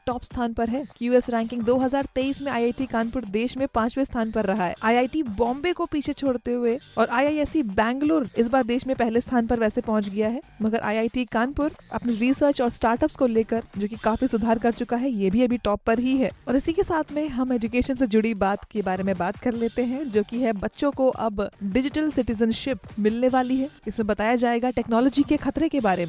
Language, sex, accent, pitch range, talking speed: Hindi, female, native, 220-260 Hz, 220 wpm